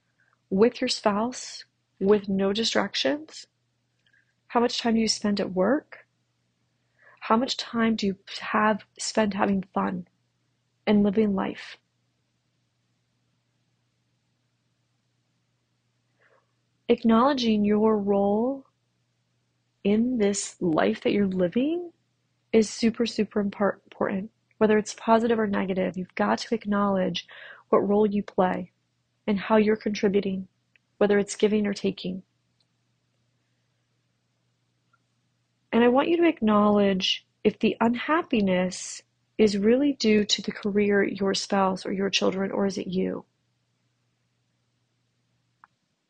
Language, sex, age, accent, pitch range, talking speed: English, female, 30-49, American, 175-220 Hz, 110 wpm